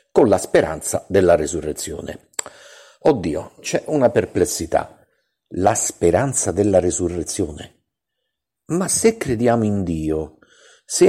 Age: 50-69